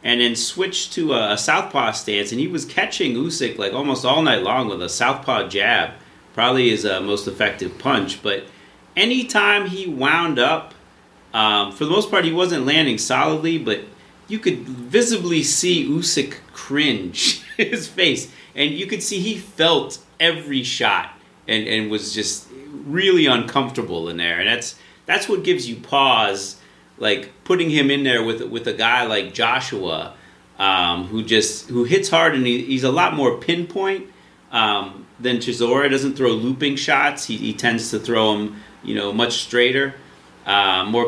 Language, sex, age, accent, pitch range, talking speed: English, male, 30-49, American, 110-170 Hz, 170 wpm